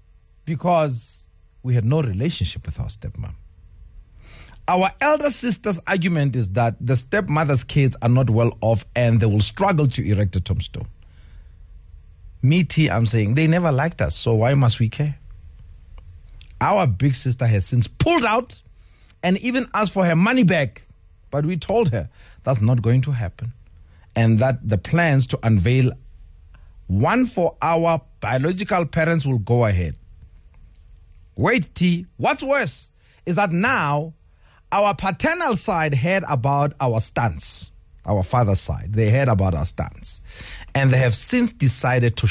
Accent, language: South African, English